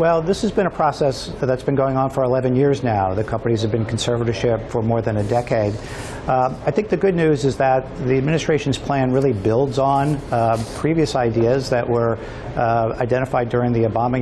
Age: 50-69